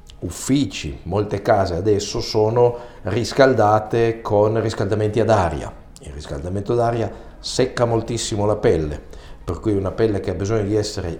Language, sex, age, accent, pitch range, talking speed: Italian, male, 50-69, native, 85-110 Hz, 145 wpm